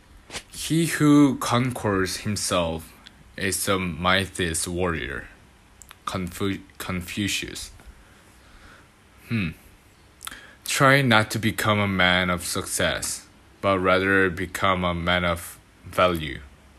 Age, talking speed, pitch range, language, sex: 20-39, 90 wpm, 90-105 Hz, English, male